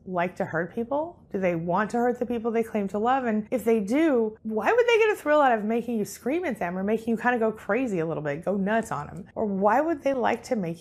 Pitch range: 175-245 Hz